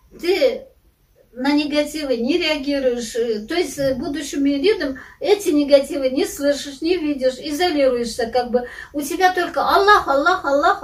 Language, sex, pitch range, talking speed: Russian, female, 255-355 Hz, 135 wpm